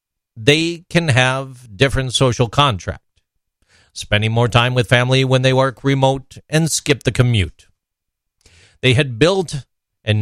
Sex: male